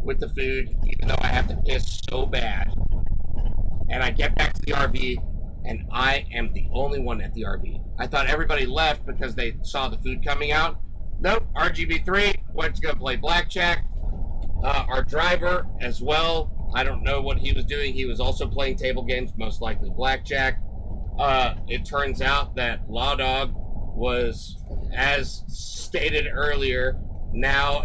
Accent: American